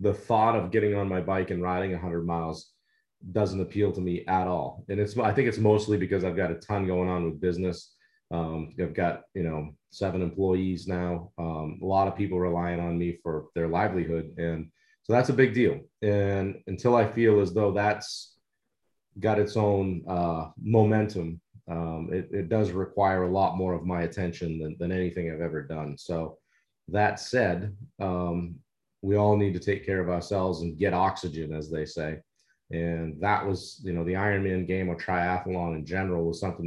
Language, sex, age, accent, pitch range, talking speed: English, male, 30-49, American, 85-105 Hz, 195 wpm